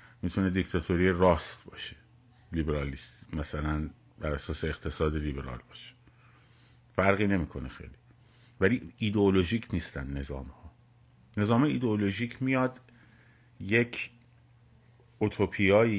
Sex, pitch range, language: male, 95-120 Hz, Persian